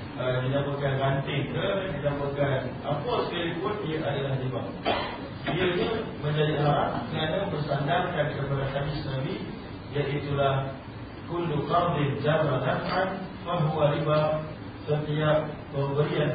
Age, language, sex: 40-59, Malay, male